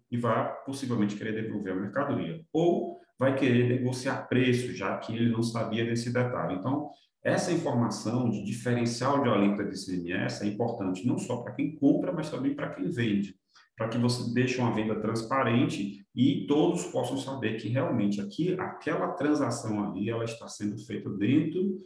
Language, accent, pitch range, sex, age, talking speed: Portuguese, Brazilian, 105-135 Hz, male, 40-59, 170 wpm